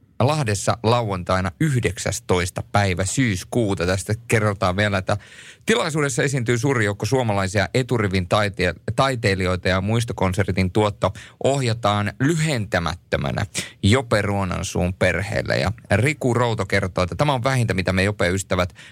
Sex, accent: male, native